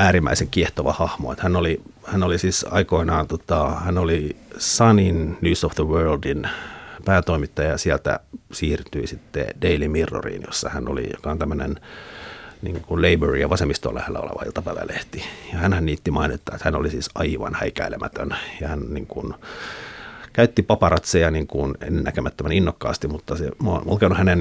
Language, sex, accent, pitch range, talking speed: Finnish, male, native, 80-95 Hz, 150 wpm